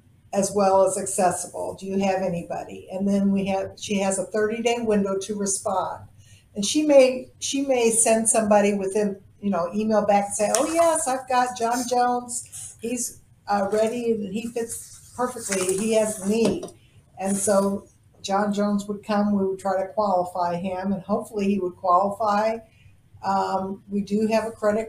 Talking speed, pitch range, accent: 175 wpm, 190-215 Hz, American